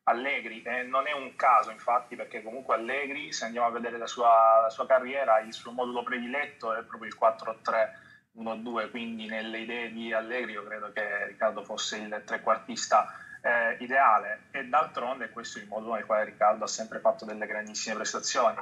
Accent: native